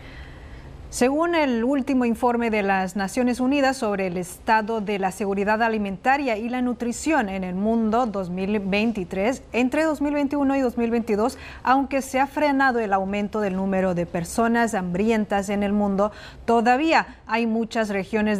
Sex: female